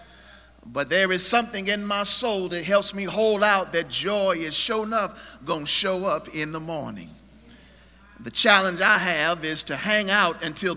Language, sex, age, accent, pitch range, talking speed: English, male, 50-69, American, 145-205 Hz, 185 wpm